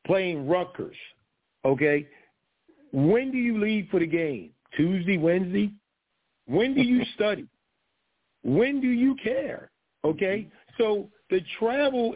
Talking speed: 120 wpm